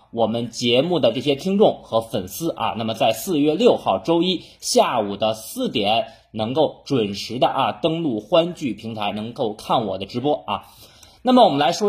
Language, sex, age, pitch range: Chinese, male, 30-49, 115-190 Hz